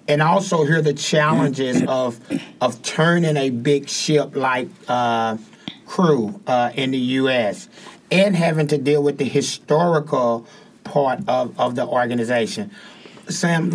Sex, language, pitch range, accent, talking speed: male, English, 130-160 Hz, American, 135 wpm